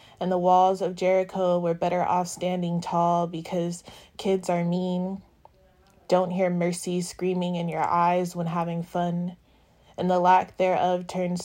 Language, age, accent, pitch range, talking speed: English, 20-39, American, 175-185 Hz, 150 wpm